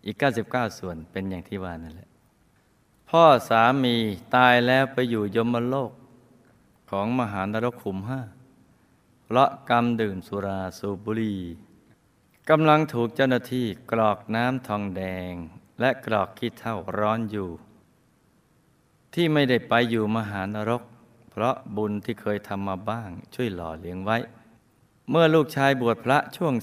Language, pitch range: Thai, 100-125 Hz